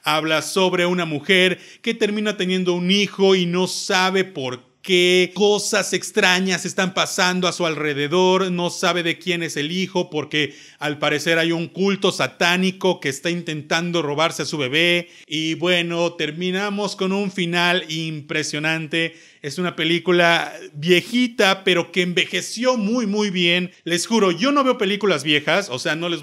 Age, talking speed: 40-59, 160 wpm